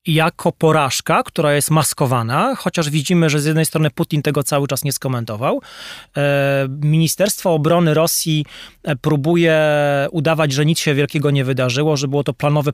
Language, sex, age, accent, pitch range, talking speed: Polish, male, 30-49, native, 140-175 Hz, 150 wpm